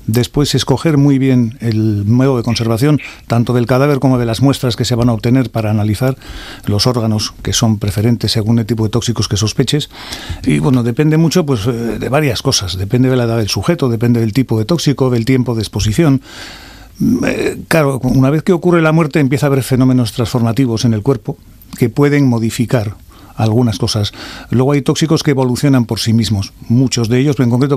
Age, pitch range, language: 40-59, 115-135 Hz, Spanish